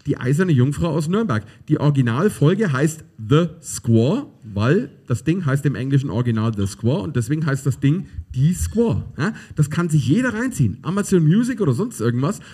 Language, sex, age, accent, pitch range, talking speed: German, male, 40-59, German, 120-170 Hz, 170 wpm